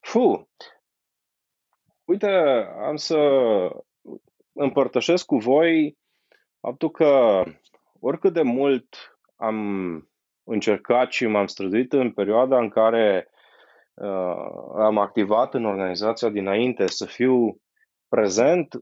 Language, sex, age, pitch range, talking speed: Romanian, male, 20-39, 110-170 Hz, 95 wpm